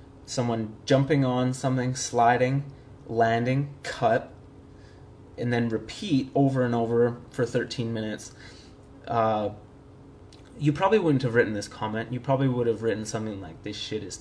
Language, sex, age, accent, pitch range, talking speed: English, male, 20-39, American, 110-130 Hz, 145 wpm